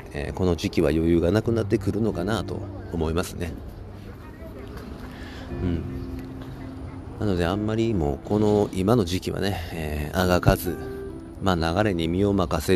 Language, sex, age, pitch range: Japanese, male, 40-59, 80-100 Hz